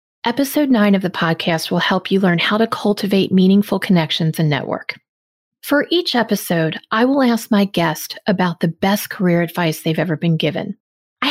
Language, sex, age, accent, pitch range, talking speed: English, female, 30-49, American, 170-225 Hz, 180 wpm